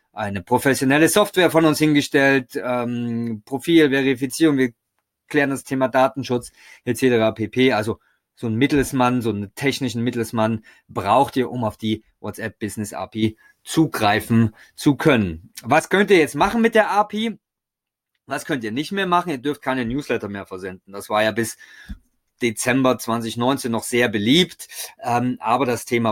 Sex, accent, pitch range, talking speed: male, German, 115-155 Hz, 150 wpm